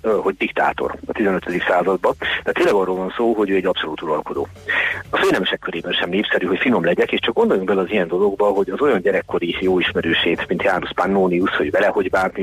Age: 40-59